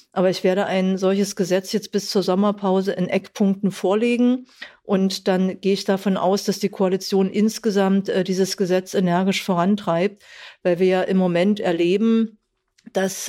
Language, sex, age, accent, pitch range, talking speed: German, female, 50-69, German, 185-215 Hz, 160 wpm